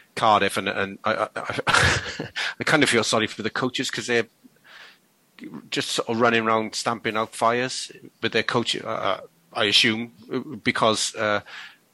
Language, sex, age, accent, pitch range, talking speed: English, male, 30-49, British, 95-115 Hz, 160 wpm